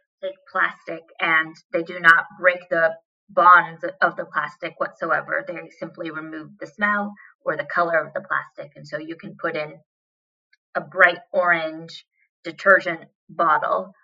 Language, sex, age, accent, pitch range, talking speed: English, female, 20-39, American, 165-195 Hz, 145 wpm